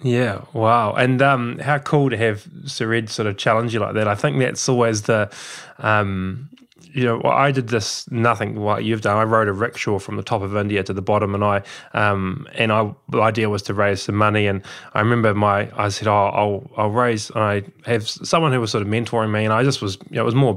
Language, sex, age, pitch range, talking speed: English, male, 20-39, 105-130 Hz, 250 wpm